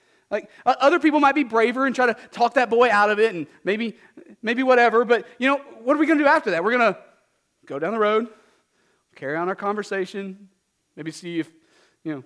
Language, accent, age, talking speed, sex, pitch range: English, American, 40-59, 225 wpm, male, 190-250 Hz